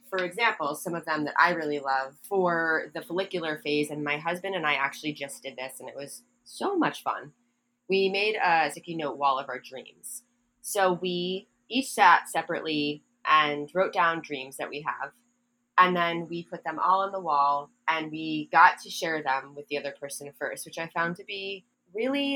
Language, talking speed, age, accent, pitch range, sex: English, 200 wpm, 20-39, American, 150-200 Hz, female